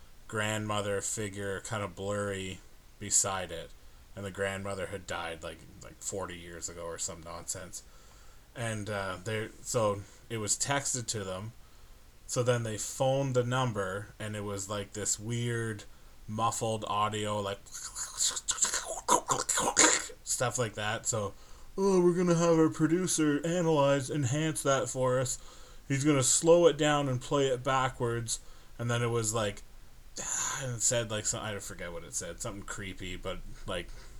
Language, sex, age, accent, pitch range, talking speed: English, male, 20-39, American, 95-120 Hz, 150 wpm